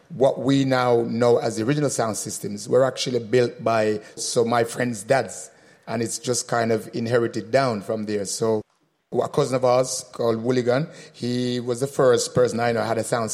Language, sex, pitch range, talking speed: English, male, 120-145 Hz, 195 wpm